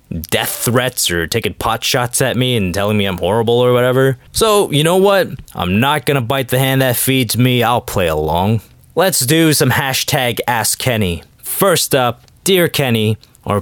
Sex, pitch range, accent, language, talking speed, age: male, 115-155 Hz, American, English, 185 wpm, 20-39